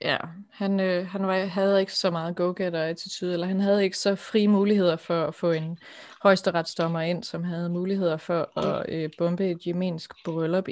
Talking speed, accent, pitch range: 185 wpm, native, 165-205 Hz